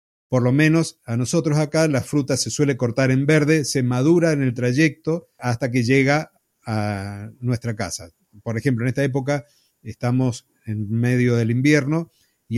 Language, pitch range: Spanish, 120-150 Hz